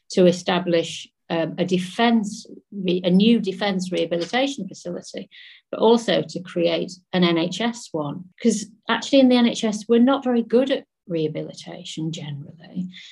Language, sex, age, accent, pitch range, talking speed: English, female, 50-69, British, 175-225 Hz, 135 wpm